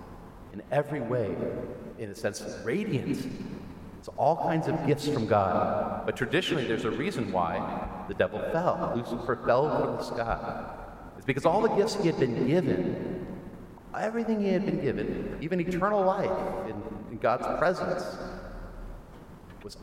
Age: 40-59